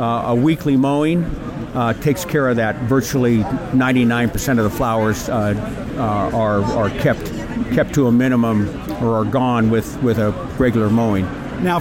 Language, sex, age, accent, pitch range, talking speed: English, male, 60-79, American, 115-150 Hz, 160 wpm